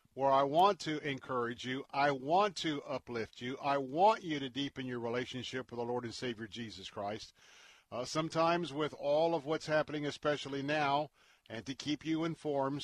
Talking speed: 180 wpm